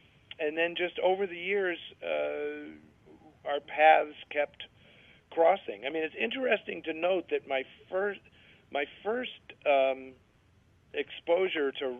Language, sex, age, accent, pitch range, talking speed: English, male, 50-69, American, 125-150 Hz, 125 wpm